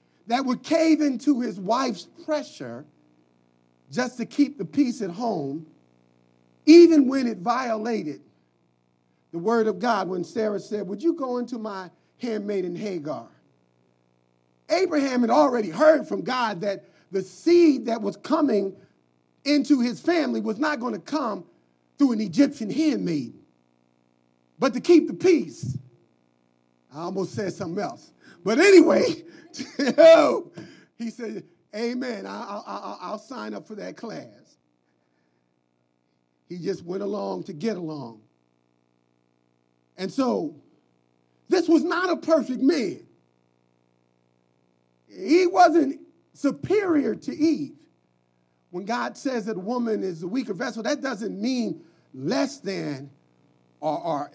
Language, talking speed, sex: English, 130 wpm, male